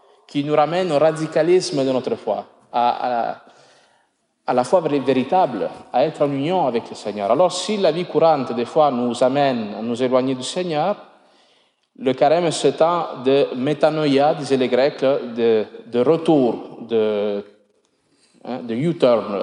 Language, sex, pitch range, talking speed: French, male, 115-155 Hz, 160 wpm